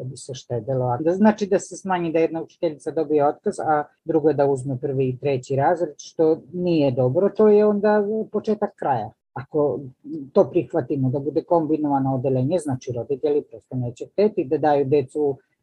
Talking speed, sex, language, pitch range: 180 wpm, female, Croatian, 125-170 Hz